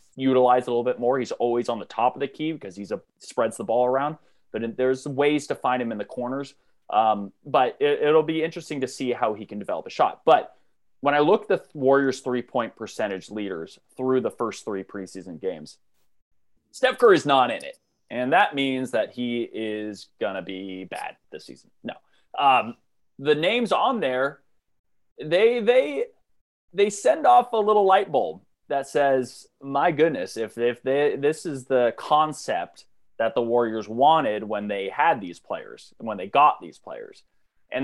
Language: English